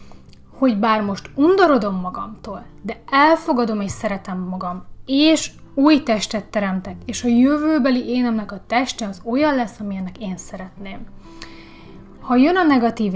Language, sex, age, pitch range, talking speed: Hungarian, female, 30-49, 195-240 Hz, 135 wpm